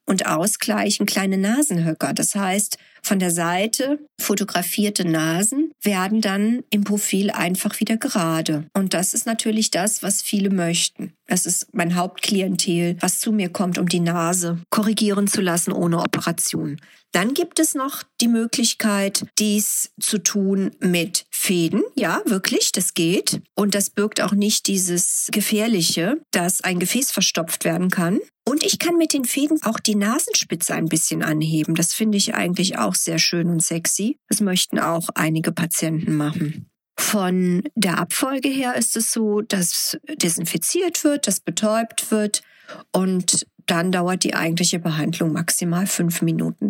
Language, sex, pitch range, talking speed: German, female, 175-220 Hz, 155 wpm